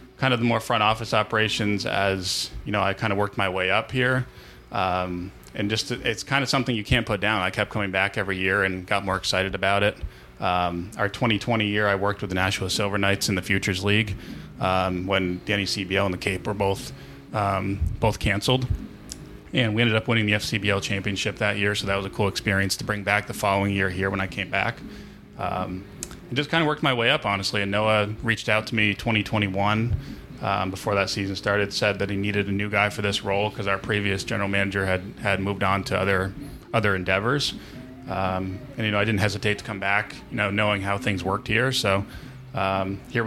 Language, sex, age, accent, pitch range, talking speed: English, male, 20-39, American, 100-110 Hz, 225 wpm